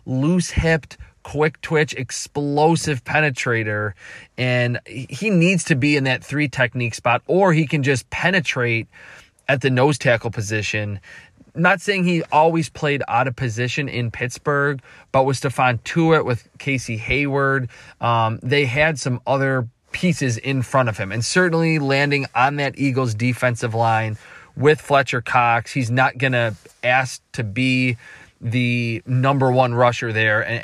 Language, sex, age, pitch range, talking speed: English, male, 20-39, 120-145 Hz, 145 wpm